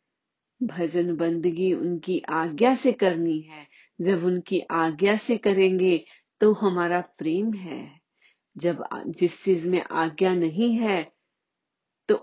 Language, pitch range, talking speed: Hindi, 165-205 Hz, 115 wpm